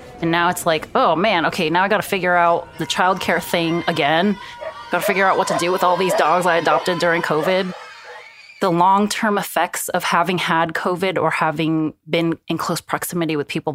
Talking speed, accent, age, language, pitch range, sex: 200 wpm, American, 20-39, English, 155-175 Hz, female